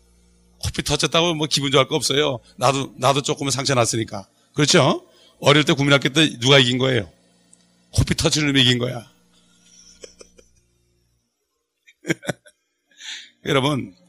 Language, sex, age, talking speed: English, male, 40-59, 105 wpm